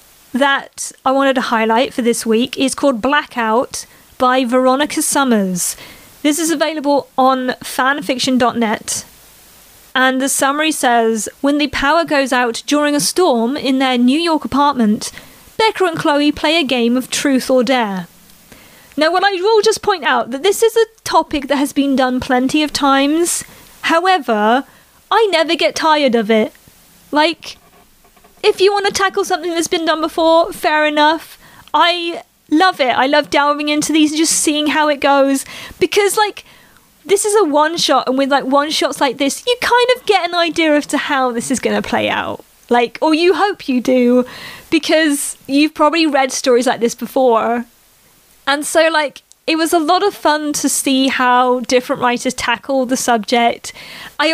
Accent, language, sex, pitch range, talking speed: British, English, female, 255-320 Hz, 175 wpm